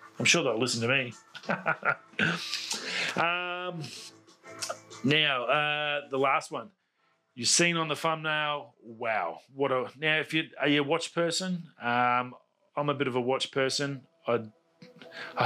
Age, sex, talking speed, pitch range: 30-49, male, 145 wpm, 120-150 Hz